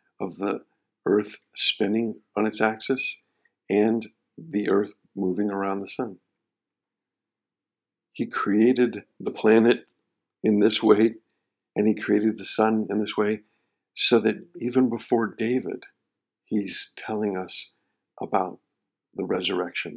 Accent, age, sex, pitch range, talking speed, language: American, 50-69, male, 105-115 Hz, 120 wpm, English